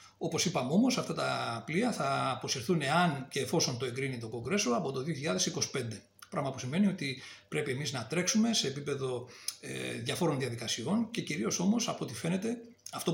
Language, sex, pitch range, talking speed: Greek, male, 125-175 Hz, 170 wpm